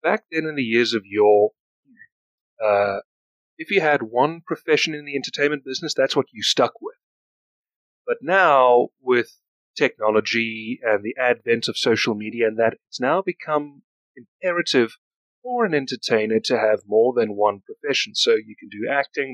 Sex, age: male, 30-49